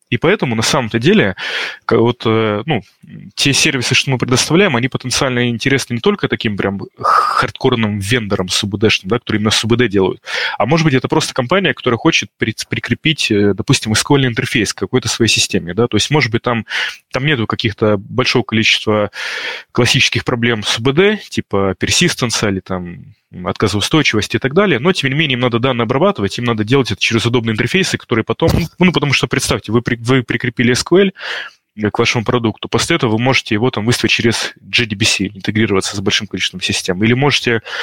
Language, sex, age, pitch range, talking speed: Russian, male, 20-39, 110-130 Hz, 180 wpm